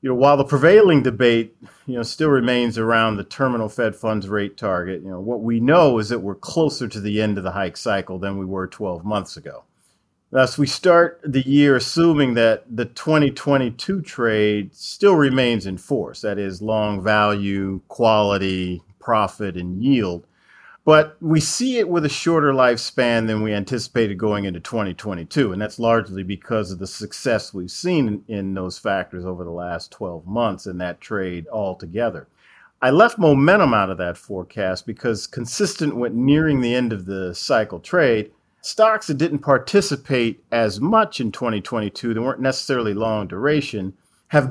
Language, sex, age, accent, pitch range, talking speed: English, male, 40-59, American, 100-135 Hz, 175 wpm